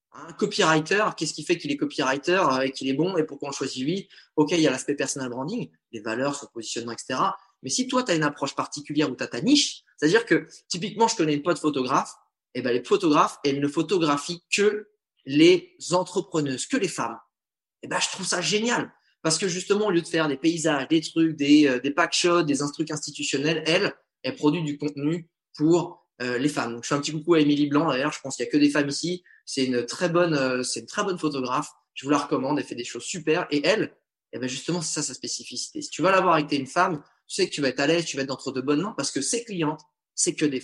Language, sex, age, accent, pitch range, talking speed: French, male, 20-39, French, 140-175 Hz, 260 wpm